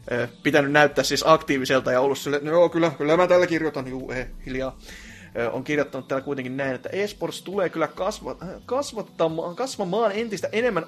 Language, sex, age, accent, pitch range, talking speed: Finnish, male, 30-49, native, 125-165 Hz, 170 wpm